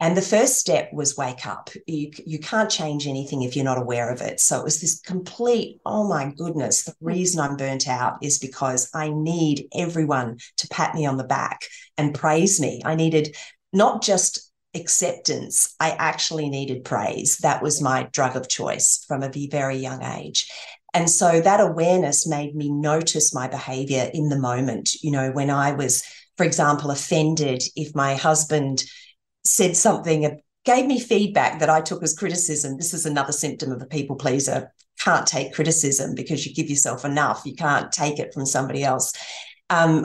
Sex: female